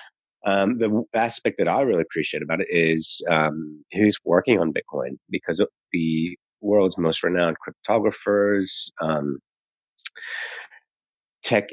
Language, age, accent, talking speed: English, 30-49, American, 125 wpm